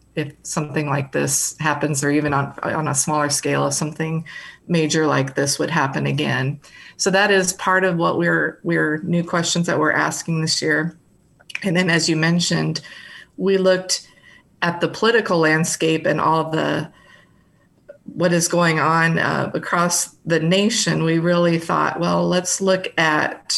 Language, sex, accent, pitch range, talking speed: English, female, American, 150-170 Hz, 165 wpm